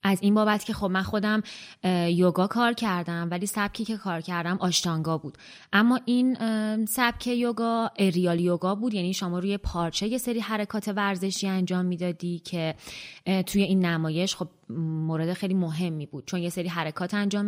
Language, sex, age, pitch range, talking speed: Persian, female, 20-39, 175-215 Hz, 165 wpm